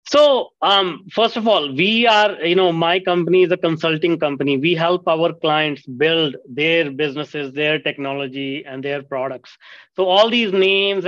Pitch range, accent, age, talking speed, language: 155-185 Hz, Indian, 30-49, 170 wpm, English